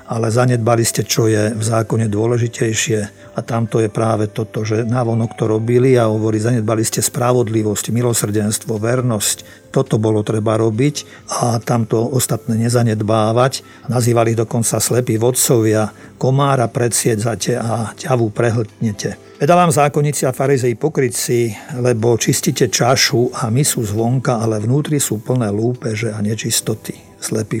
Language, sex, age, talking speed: Slovak, male, 50-69, 135 wpm